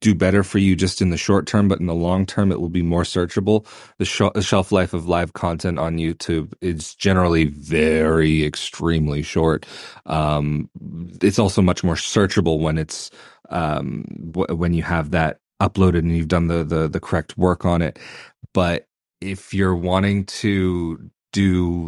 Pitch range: 90-105 Hz